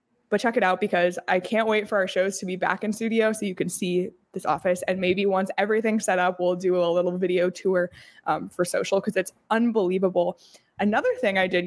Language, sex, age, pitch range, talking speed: English, female, 20-39, 185-225 Hz, 225 wpm